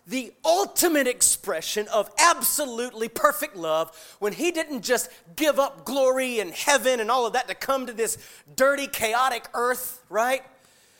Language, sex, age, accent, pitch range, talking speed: English, male, 30-49, American, 200-275 Hz, 155 wpm